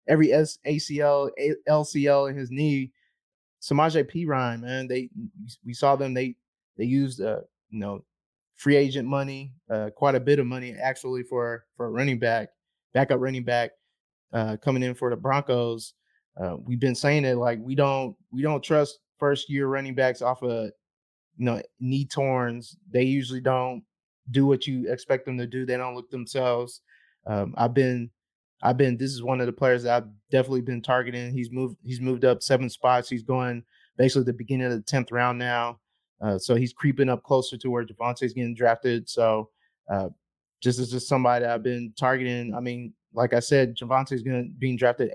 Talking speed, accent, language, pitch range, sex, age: 190 wpm, American, English, 120-135 Hz, male, 20-39